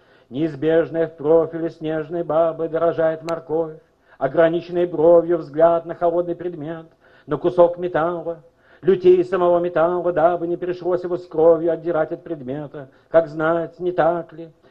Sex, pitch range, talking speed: male, 165-180 Hz, 135 wpm